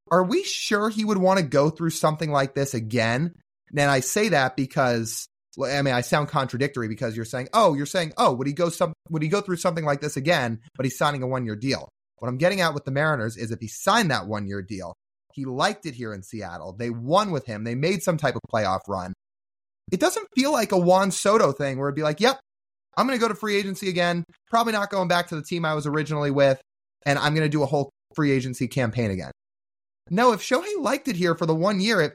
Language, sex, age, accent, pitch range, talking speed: English, male, 30-49, American, 140-205 Hz, 245 wpm